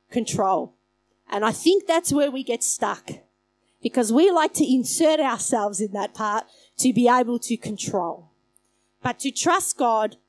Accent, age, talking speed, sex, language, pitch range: Australian, 30-49, 155 wpm, female, English, 220-295 Hz